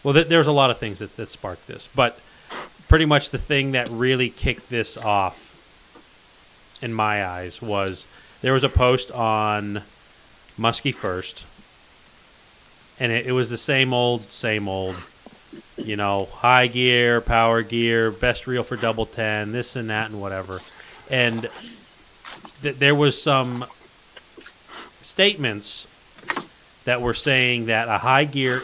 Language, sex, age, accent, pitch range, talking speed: English, male, 30-49, American, 105-130 Hz, 140 wpm